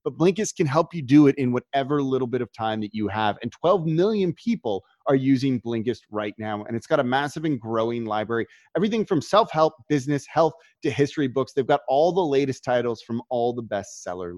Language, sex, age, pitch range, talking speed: English, male, 30-49, 125-165 Hz, 215 wpm